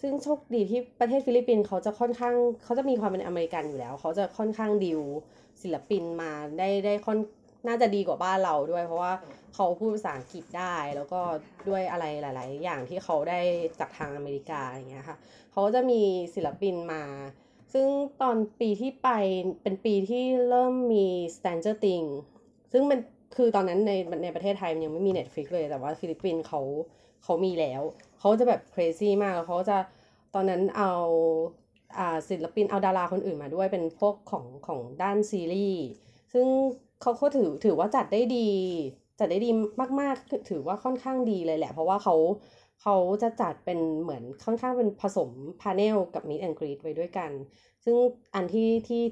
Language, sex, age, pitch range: Thai, female, 20-39, 165-230 Hz